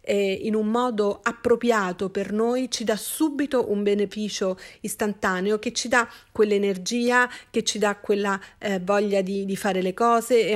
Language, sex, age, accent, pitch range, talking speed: Italian, female, 40-59, native, 195-230 Hz, 160 wpm